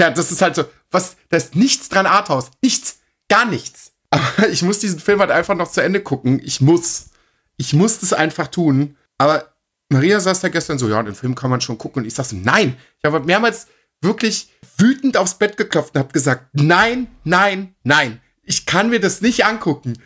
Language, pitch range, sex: German, 130-180 Hz, male